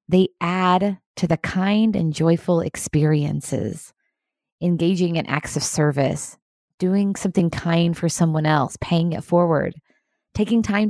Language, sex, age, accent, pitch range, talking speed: English, female, 20-39, American, 155-215 Hz, 130 wpm